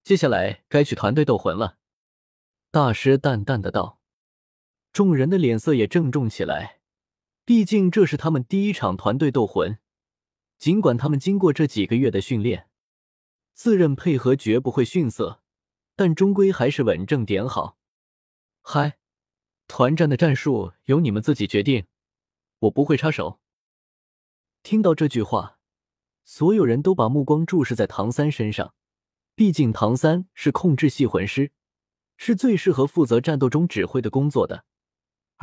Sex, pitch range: male, 110-160 Hz